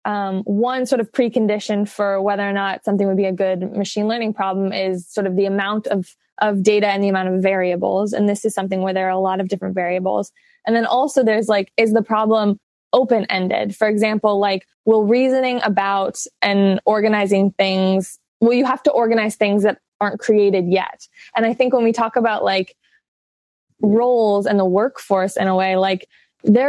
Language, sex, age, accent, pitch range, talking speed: English, female, 20-39, American, 195-230 Hz, 195 wpm